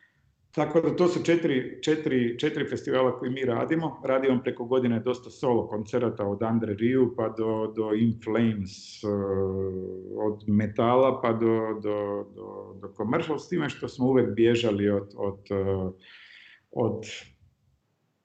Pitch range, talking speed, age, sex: 105-125 Hz, 140 wpm, 50-69, male